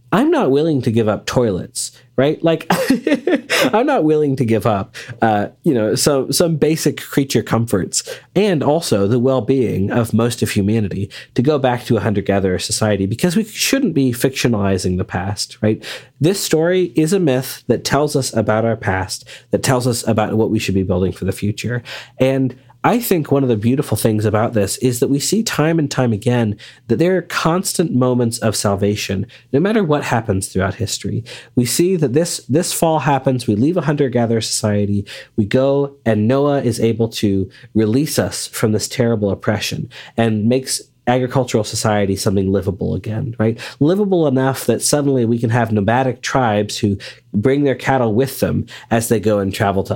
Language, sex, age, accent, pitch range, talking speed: English, male, 30-49, American, 105-140 Hz, 185 wpm